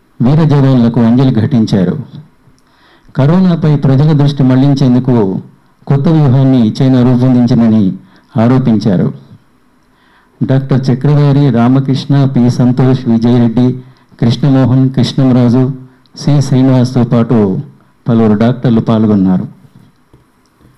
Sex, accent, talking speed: male, native, 85 wpm